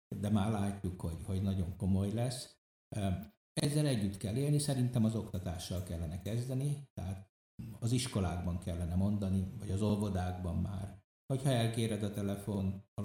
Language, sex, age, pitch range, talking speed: Hungarian, male, 60-79, 95-115 Hz, 145 wpm